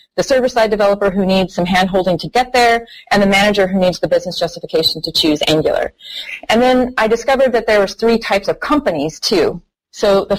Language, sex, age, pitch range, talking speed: English, female, 30-49, 180-230 Hz, 200 wpm